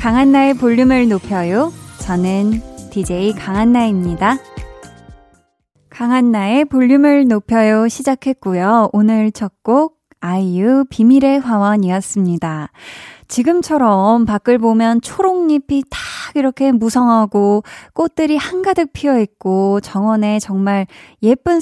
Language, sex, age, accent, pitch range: Korean, female, 20-39, native, 195-270 Hz